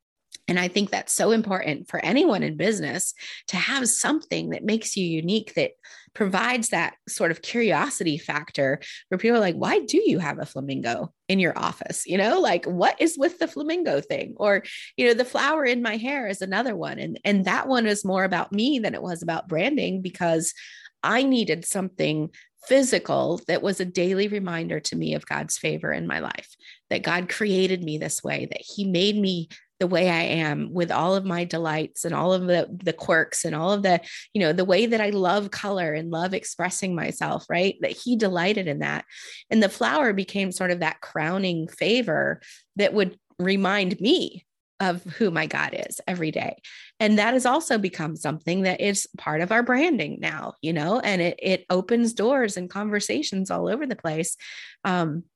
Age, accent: 30-49, American